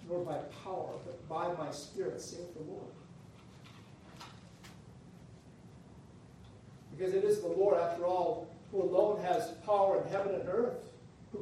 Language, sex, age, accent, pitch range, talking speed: English, male, 60-79, American, 150-195 Hz, 135 wpm